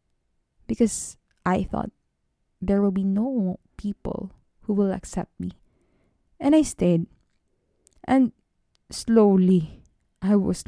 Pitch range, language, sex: 180-230 Hz, English, female